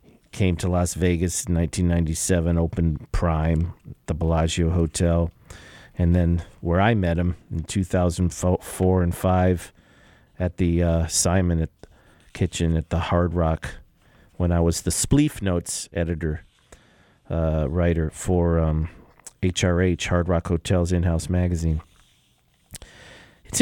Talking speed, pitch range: 125 wpm, 85-95 Hz